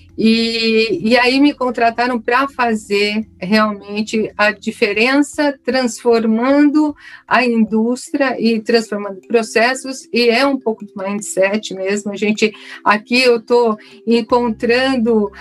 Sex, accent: female, Brazilian